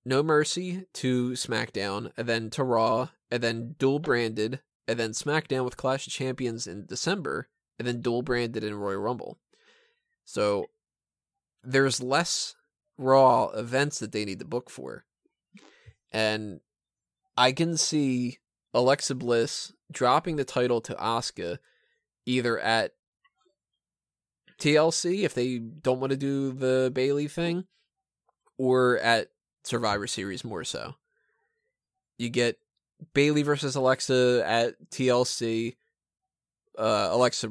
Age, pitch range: 20-39, 120-145 Hz